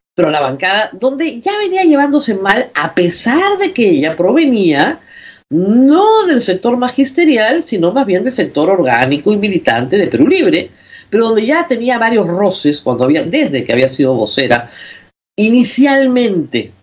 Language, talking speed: Spanish, 155 wpm